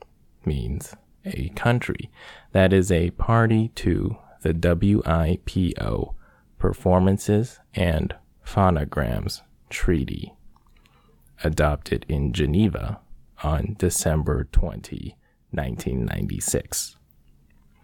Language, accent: English, American